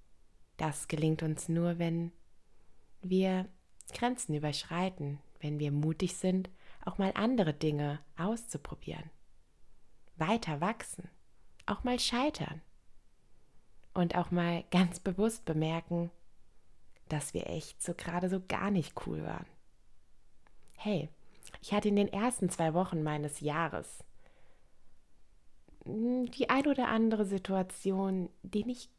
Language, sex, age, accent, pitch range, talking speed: German, female, 20-39, German, 155-205 Hz, 115 wpm